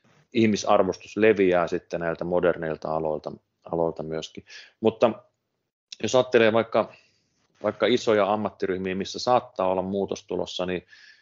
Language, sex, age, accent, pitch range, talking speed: Finnish, male, 30-49, native, 90-115 Hz, 105 wpm